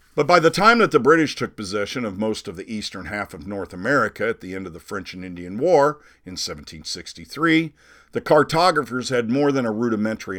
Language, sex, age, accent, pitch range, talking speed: English, male, 50-69, American, 95-130 Hz, 210 wpm